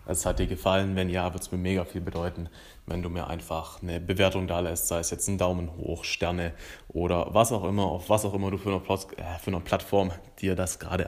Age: 30-49